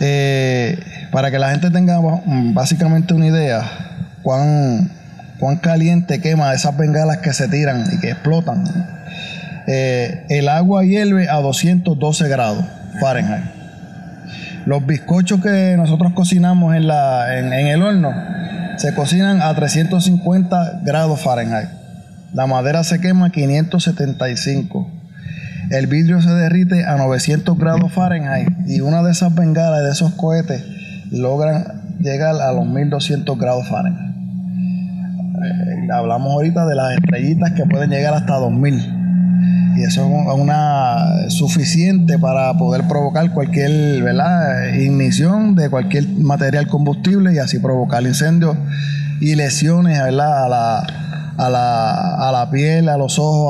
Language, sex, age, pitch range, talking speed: Spanish, male, 20-39, 145-175 Hz, 135 wpm